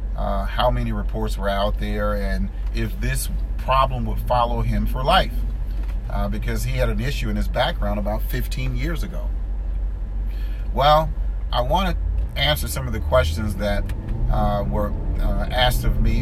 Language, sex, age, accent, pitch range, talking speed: English, male, 40-59, American, 75-110 Hz, 165 wpm